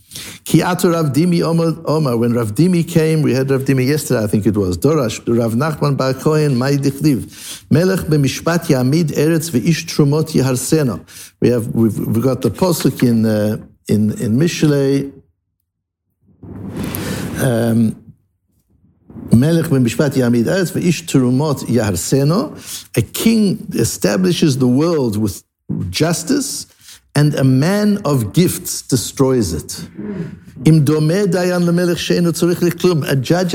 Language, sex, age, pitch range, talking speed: English, male, 60-79, 125-165 Hz, 115 wpm